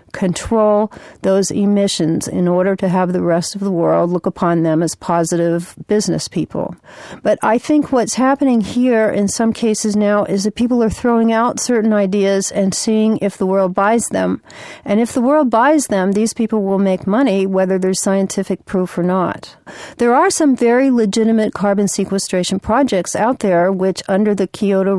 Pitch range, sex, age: 185-220 Hz, female, 50-69